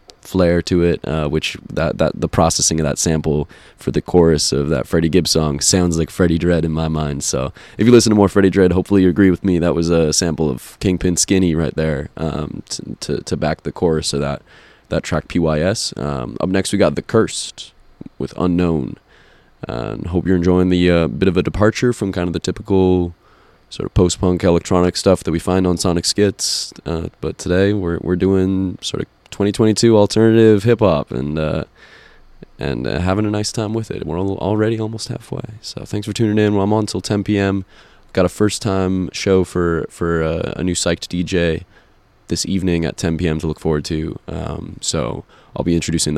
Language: Italian